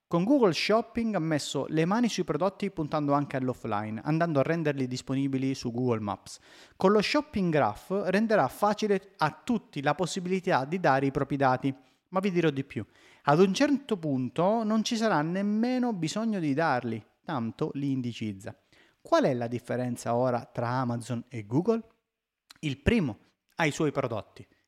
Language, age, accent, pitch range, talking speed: Italian, 30-49, native, 120-190 Hz, 165 wpm